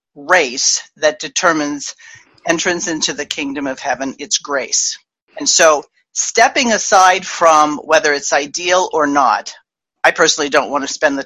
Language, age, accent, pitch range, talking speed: English, 40-59, American, 155-215 Hz, 150 wpm